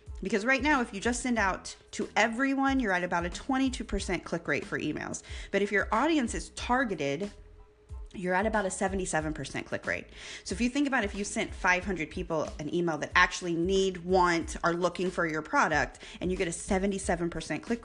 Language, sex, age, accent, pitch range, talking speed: English, female, 20-39, American, 165-220 Hz, 200 wpm